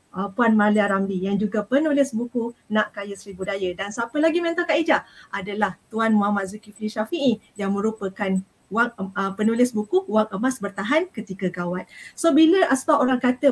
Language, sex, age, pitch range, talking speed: Malay, female, 30-49, 210-270 Hz, 160 wpm